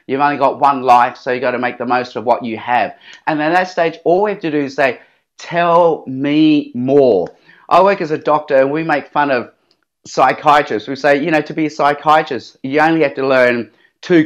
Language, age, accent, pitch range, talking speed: English, 30-49, Australian, 135-170 Hz, 235 wpm